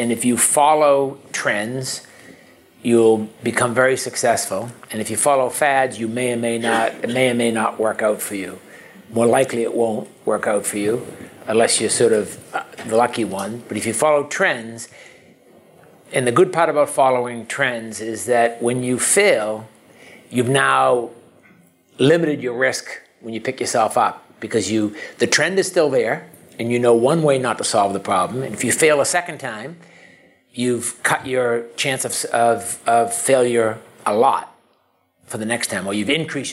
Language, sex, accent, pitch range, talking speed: English, male, American, 110-130 Hz, 180 wpm